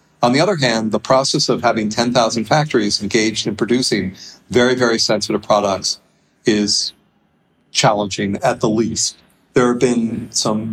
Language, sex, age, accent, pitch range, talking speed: English, male, 50-69, American, 105-130 Hz, 145 wpm